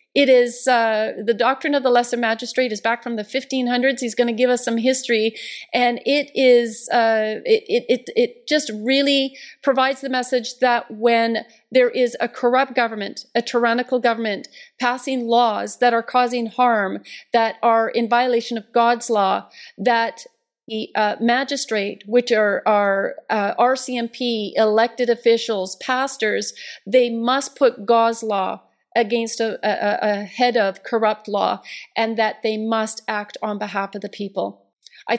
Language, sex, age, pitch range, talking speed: English, female, 40-59, 215-245 Hz, 155 wpm